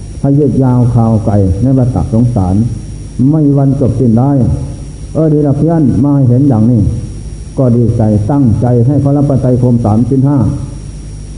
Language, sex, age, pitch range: Thai, male, 60-79, 115-140 Hz